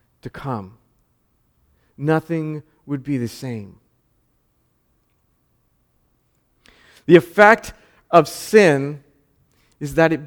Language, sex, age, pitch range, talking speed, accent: English, male, 40-59, 125-175 Hz, 80 wpm, American